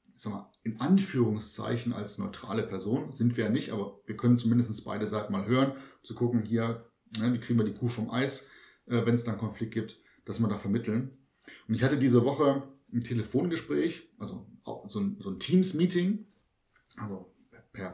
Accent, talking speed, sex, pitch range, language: German, 170 wpm, male, 115-140 Hz, German